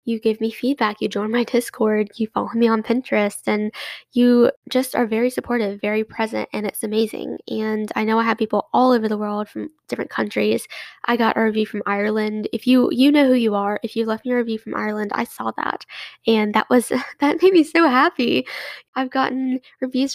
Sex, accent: female, American